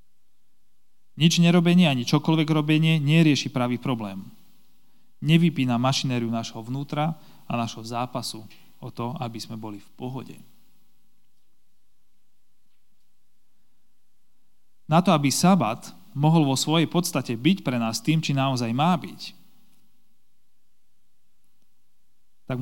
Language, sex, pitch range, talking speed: Slovak, male, 120-150 Hz, 105 wpm